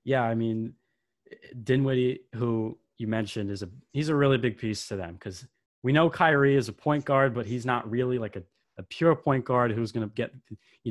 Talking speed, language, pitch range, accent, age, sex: 215 wpm, English, 110-130 Hz, American, 20-39, male